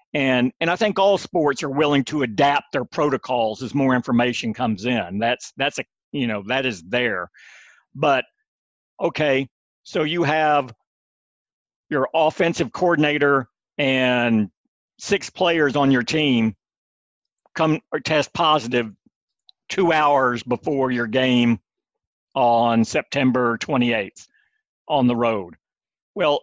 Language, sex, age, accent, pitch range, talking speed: English, male, 50-69, American, 125-160 Hz, 125 wpm